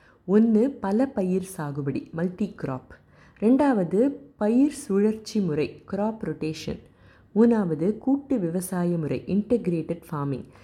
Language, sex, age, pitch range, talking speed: Tamil, female, 30-49, 150-205 Hz, 100 wpm